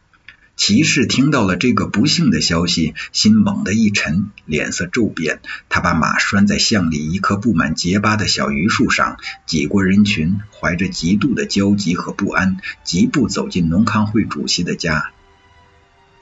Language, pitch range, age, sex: Chinese, 90-115 Hz, 50-69, male